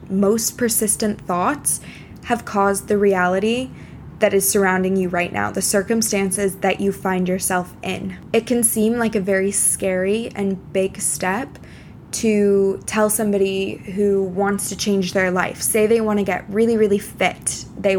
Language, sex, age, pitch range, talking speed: English, female, 20-39, 190-225 Hz, 160 wpm